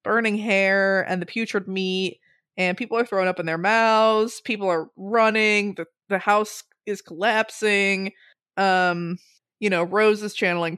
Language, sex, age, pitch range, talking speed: English, female, 20-39, 185-225 Hz, 155 wpm